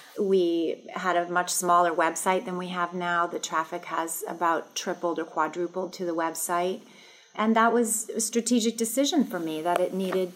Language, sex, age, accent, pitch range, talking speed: English, female, 30-49, American, 170-210 Hz, 180 wpm